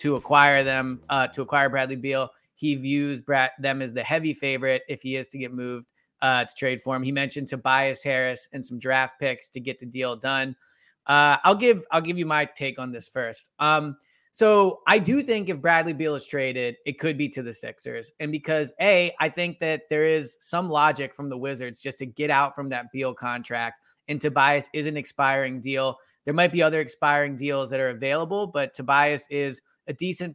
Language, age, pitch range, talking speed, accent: English, 20-39, 130-155 Hz, 210 wpm, American